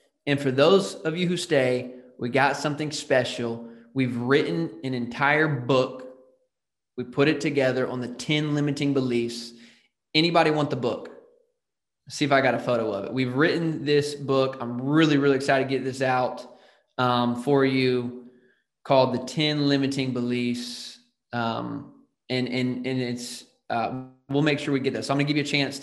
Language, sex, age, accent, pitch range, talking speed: English, male, 20-39, American, 125-150 Hz, 180 wpm